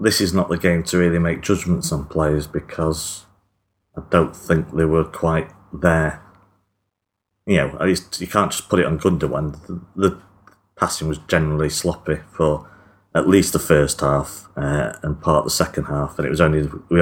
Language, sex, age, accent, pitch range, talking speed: English, male, 30-49, British, 75-95 Hz, 190 wpm